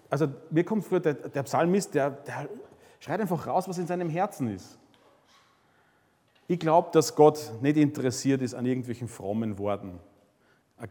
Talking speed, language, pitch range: 160 wpm, German, 110-135 Hz